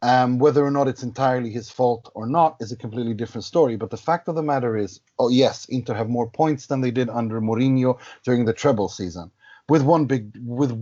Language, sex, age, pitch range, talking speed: English, male, 30-49, 115-140 Hz, 225 wpm